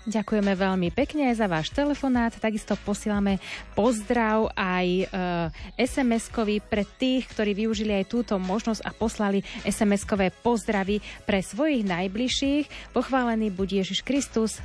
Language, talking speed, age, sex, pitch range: Slovak, 120 wpm, 30-49, female, 195-235 Hz